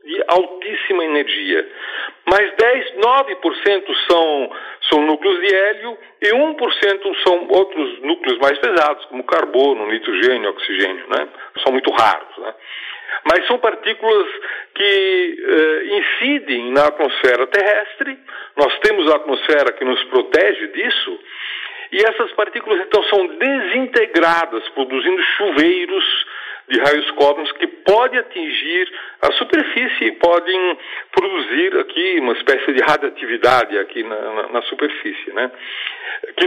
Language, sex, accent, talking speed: Portuguese, male, Brazilian, 120 wpm